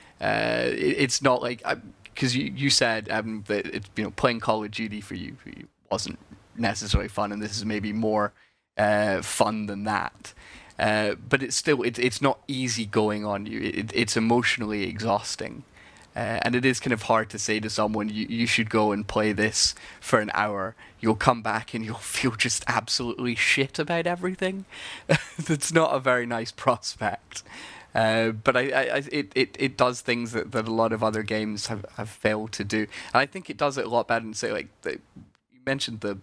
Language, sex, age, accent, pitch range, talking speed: English, male, 20-39, British, 105-120 Hz, 205 wpm